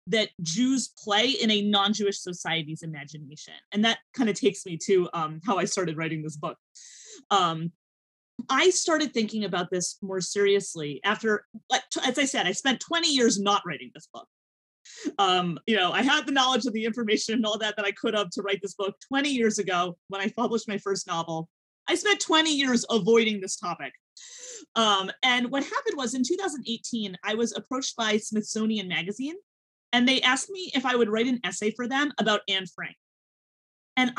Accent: American